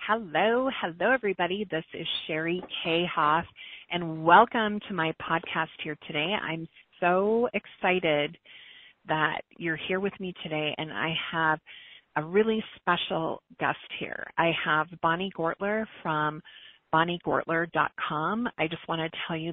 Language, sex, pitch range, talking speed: English, female, 155-185 Hz, 135 wpm